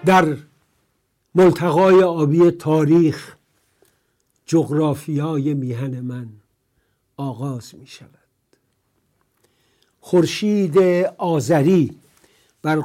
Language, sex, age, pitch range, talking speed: English, male, 60-79, 135-165 Hz, 65 wpm